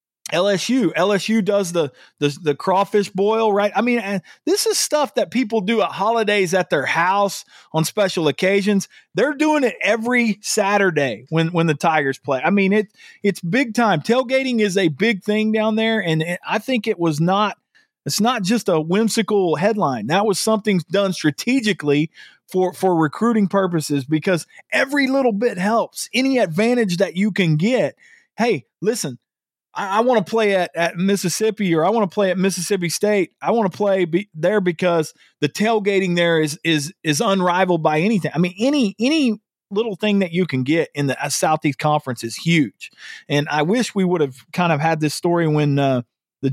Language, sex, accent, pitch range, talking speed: English, male, American, 155-215 Hz, 185 wpm